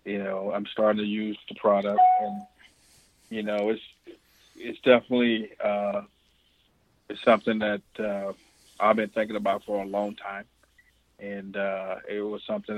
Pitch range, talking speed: 100-110 Hz, 150 wpm